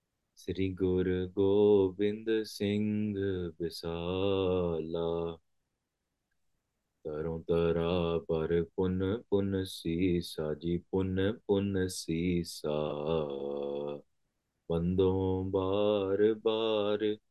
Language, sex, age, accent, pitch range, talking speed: English, male, 30-49, Indian, 85-100 Hz, 65 wpm